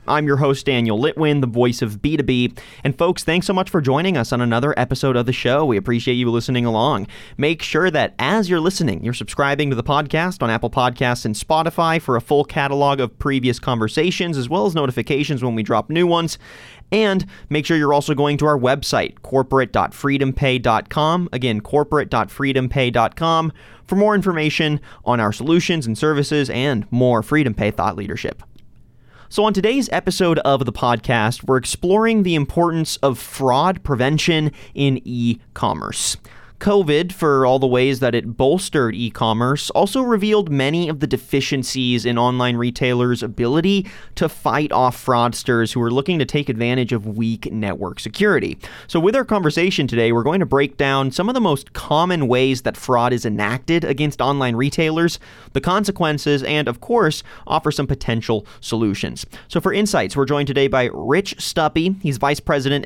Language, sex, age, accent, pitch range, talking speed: English, male, 30-49, American, 120-155 Hz, 170 wpm